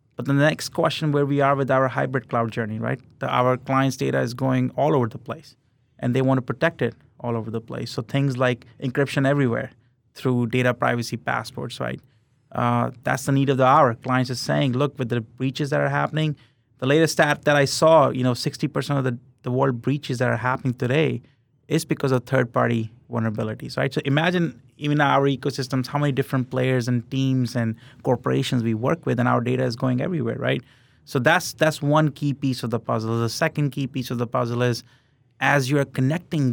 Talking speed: 205 wpm